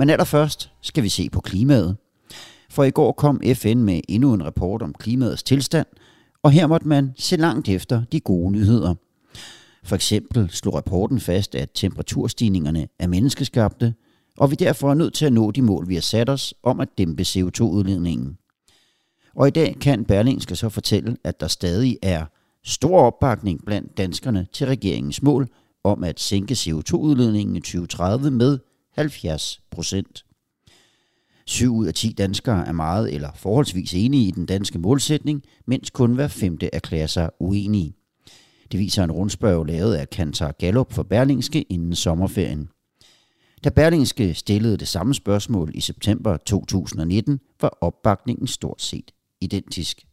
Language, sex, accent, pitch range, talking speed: Danish, male, native, 90-130 Hz, 155 wpm